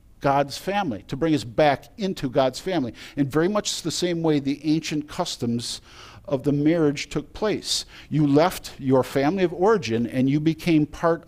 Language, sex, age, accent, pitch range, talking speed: English, male, 50-69, American, 130-170 Hz, 175 wpm